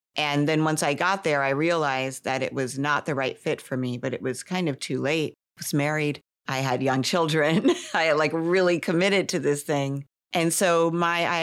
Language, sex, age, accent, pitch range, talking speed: English, female, 50-69, American, 135-170 Hz, 215 wpm